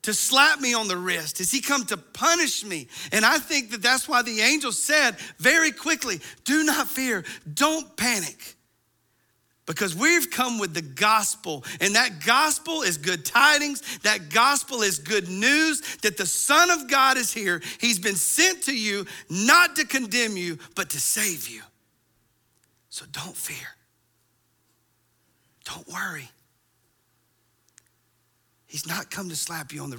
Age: 40-59